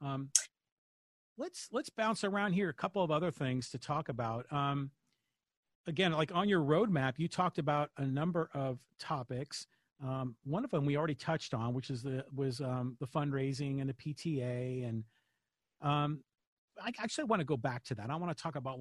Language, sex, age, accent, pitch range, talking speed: English, male, 40-59, American, 135-175 Hz, 190 wpm